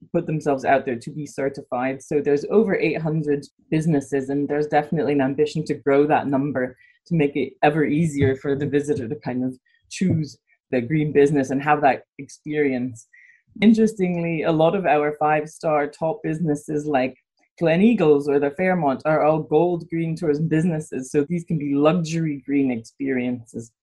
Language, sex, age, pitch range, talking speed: English, female, 20-39, 145-165 Hz, 170 wpm